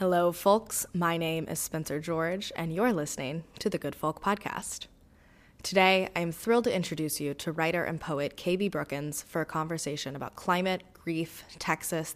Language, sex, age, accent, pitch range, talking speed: English, female, 20-39, American, 150-185 Hz, 170 wpm